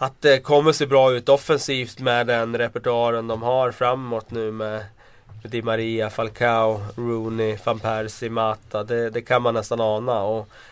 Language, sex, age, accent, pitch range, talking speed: Swedish, male, 30-49, native, 110-130 Hz, 170 wpm